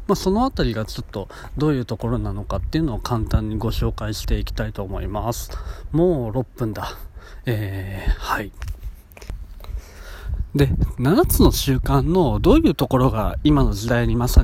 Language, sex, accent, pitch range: Japanese, male, native, 100-145 Hz